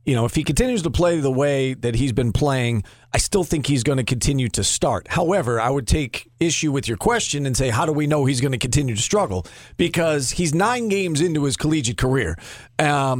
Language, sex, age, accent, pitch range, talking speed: English, male, 40-59, American, 130-165 Hz, 230 wpm